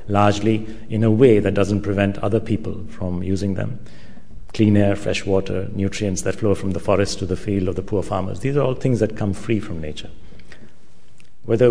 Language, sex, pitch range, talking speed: English, male, 95-110 Hz, 200 wpm